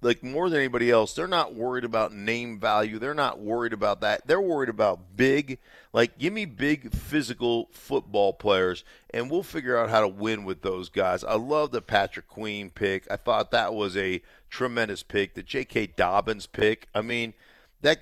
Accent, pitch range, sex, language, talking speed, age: American, 100-120 Hz, male, English, 190 wpm, 50-69